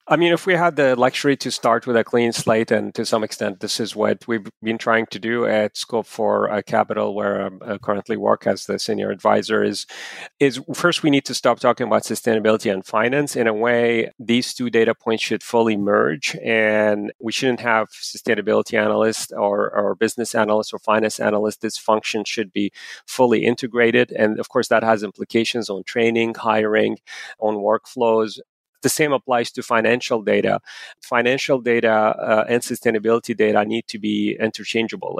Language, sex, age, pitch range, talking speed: English, male, 30-49, 105-120 Hz, 180 wpm